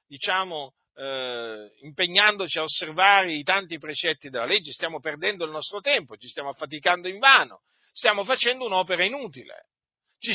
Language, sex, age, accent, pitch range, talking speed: Italian, male, 50-69, native, 160-220 Hz, 145 wpm